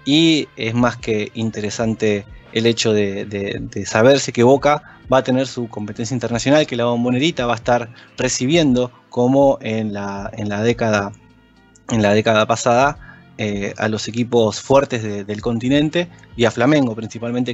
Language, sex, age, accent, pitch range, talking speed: Spanish, male, 20-39, Argentinian, 110-150 Hz, 145 wpm